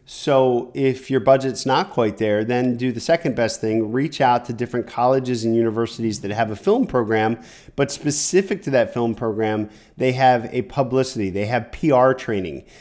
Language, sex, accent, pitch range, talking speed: English, male, American, 115-135 Hz, 185 wpm